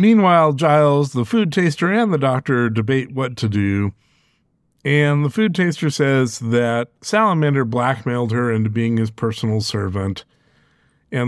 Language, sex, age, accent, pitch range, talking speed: English, male, 50-69, American, 115-155 Hz, 145 wpm